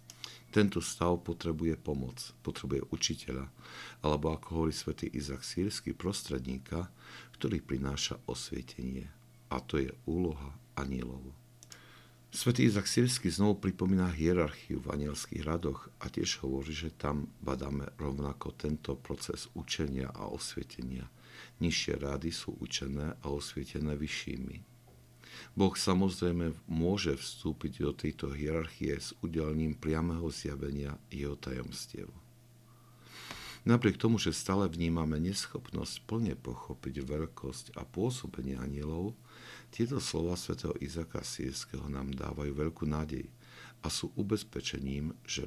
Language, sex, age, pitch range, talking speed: Slovak, male, 60-79, 70-90 Hz, 115 wpm